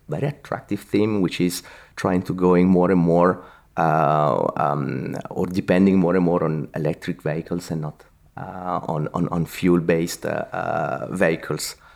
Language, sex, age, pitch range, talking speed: English, male, 30-49, 95-135 Hz, 160 wpm